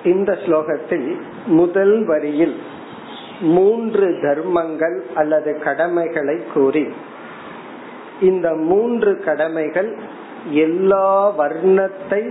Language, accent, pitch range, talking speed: Tamil, native, 155-200 Hz, 55 wpm